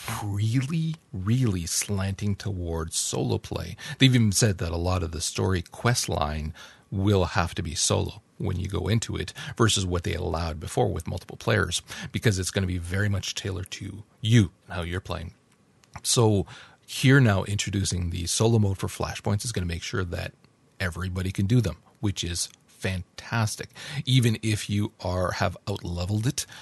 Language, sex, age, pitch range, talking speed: English, male, 40-59, 90-115 Hz, 180 wpm